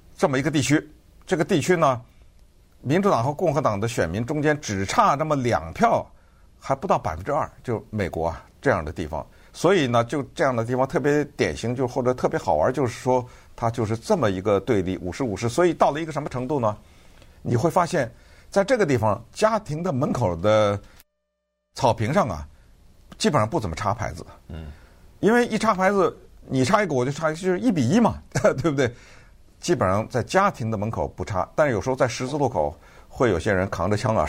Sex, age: male, 50-69